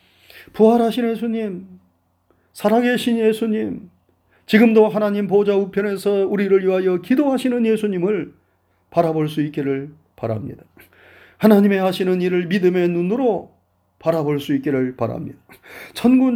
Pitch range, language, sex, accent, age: 130-200 Hz, Korean, male, native, 30-49